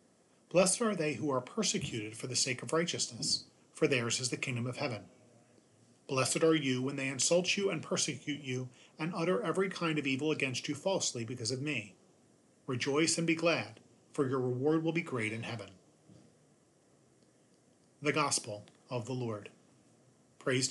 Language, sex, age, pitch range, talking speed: English, male, 40-59, 120-155 Hz, 170 wpm